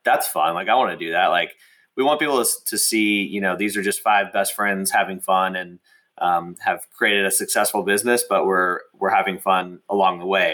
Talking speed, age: 220 wpm, 20-39